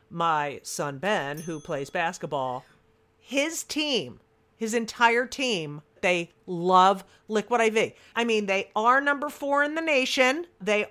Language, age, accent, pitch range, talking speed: English, 50-69, American, 160-225 Hz, 140 wpm